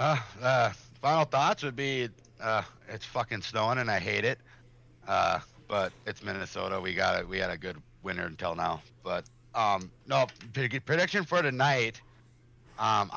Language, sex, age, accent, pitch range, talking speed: English, male, 50-69, American, 100-130 Hz, 165 wpm